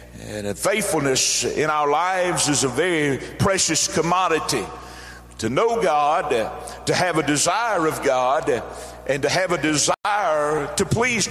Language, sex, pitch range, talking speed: English, male, 160-195 Hz, 140 wpm